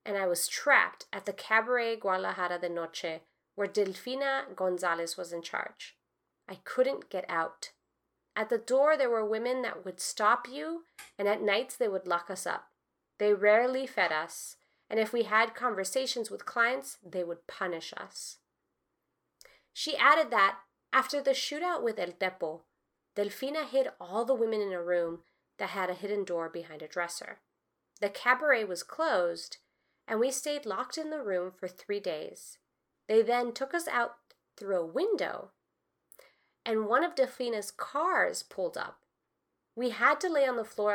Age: 30-49